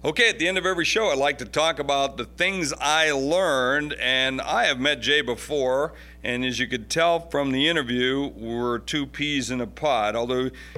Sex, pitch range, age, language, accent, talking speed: male, 135-200 Hz, 50-69, English, American, 205 wpm